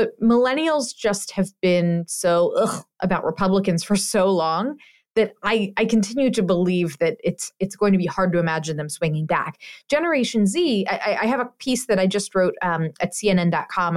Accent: American